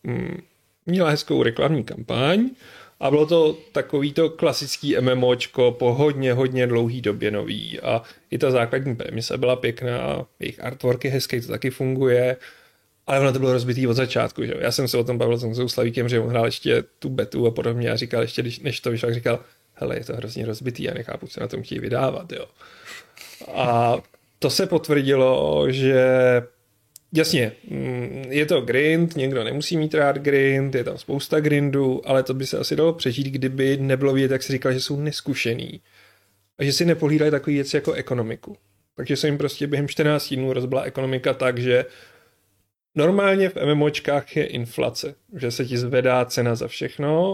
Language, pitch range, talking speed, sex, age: Czech, 120-145 Hz, 175 wpm, male, 30-49